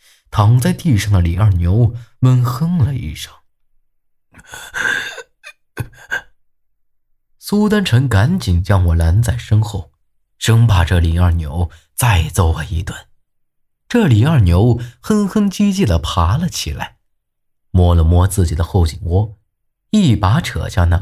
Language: Chinese